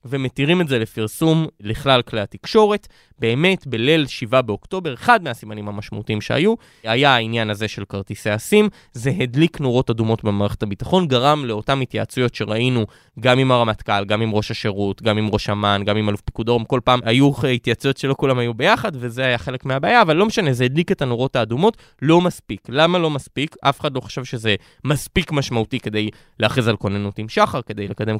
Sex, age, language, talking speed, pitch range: male, 20-39, Hebrew, 185 wpm, 110-150 Hz